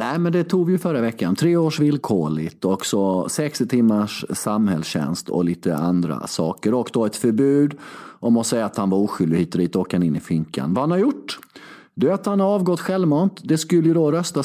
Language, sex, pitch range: Swedish, male, 100-140 Hz